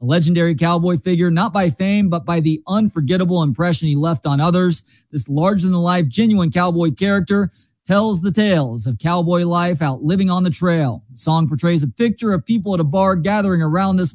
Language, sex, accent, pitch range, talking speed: English, male, American, 150-180 Hz, 190 wpm